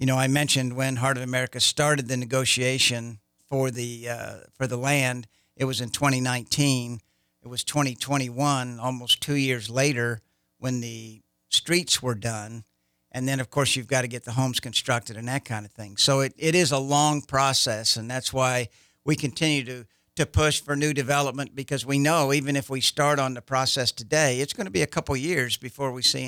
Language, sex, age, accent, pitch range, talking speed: English, male, 60-79, American, 115-140 Hz, 200 wpm